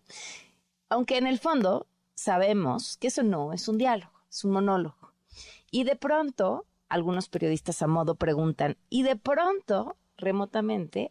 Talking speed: 140 wpm